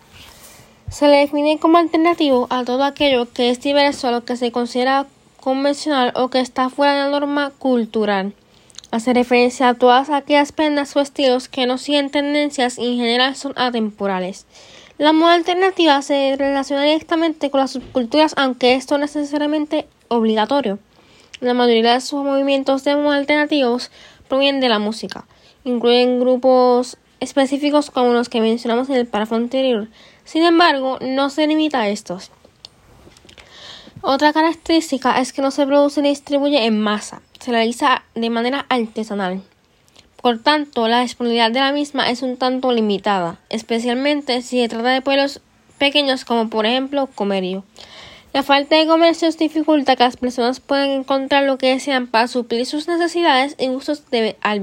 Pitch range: 240-285 Hz